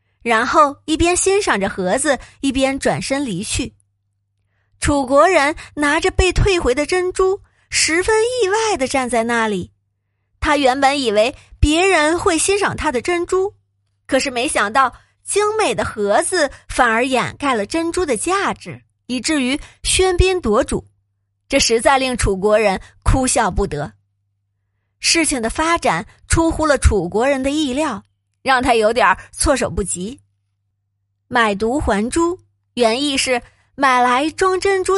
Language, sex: Chinese, female